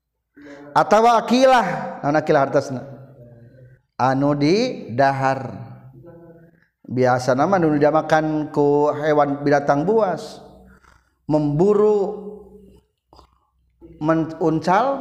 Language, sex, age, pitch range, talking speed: Indonesian, male, 50-69, 130-170 Hz, 75 wpm